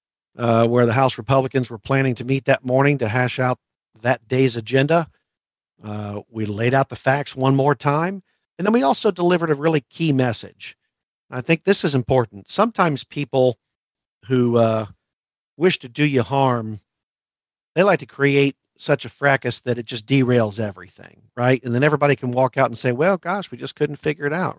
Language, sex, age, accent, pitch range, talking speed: English, male, 50-69, American, 120-140 Hz, 190 wpm